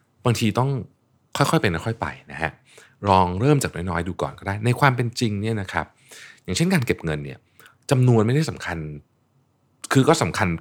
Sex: male